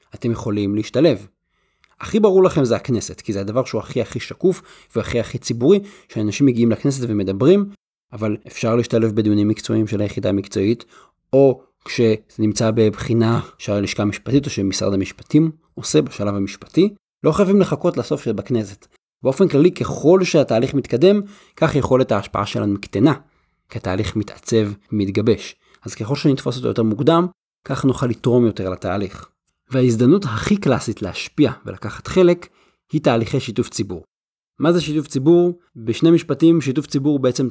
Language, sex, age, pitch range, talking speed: Hebrew, male, 30-49, 110-145 Hz, 145 wpm